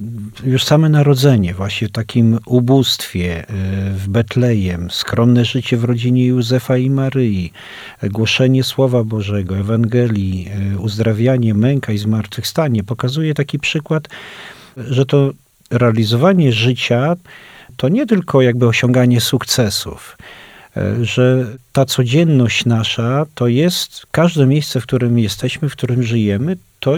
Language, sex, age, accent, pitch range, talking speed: Polish, male, 40-59, native, 110-135 Hz, 115 wpm